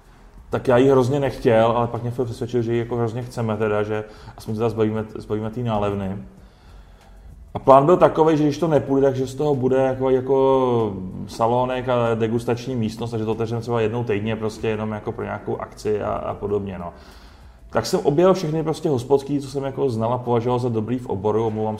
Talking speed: 205 wpm